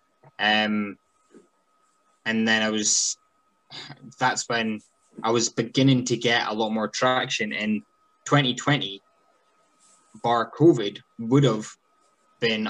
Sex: male